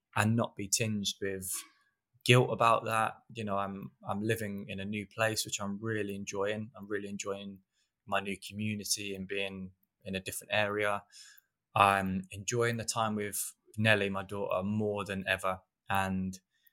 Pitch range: 100-110 Hz